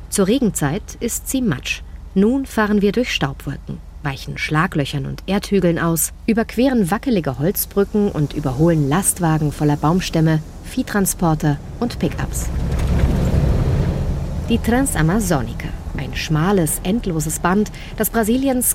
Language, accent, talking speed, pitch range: German, German, 110 wpm, 145-205 Hz